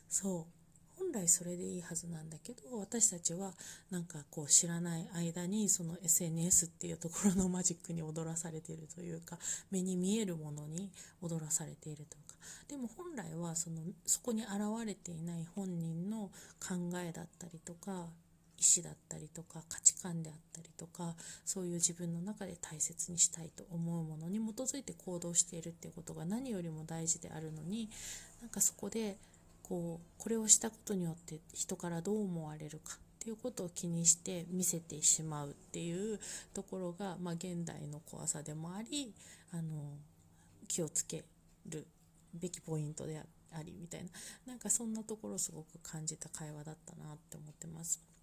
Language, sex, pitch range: Japanese, female, 165-195 Hz